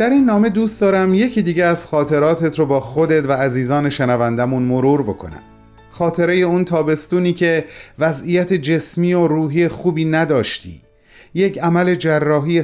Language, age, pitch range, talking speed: Persian, 40-59, 125-175 Hz, 140 wpm